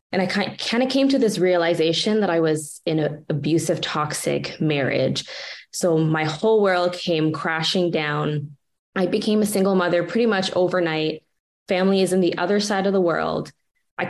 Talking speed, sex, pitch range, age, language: 175 wpm, female, 160-195 Hz, 20-39, English